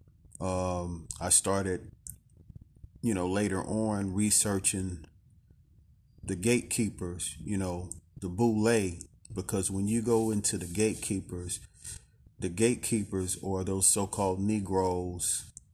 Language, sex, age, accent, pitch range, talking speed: English, male, 40-59, American, 95-110 Hz, 105 wpm